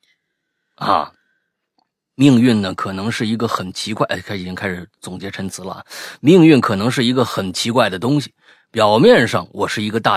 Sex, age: male, 30-49